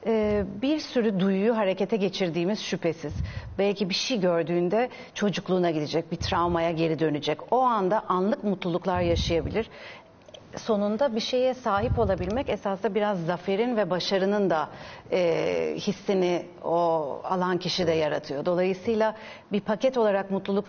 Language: Turkish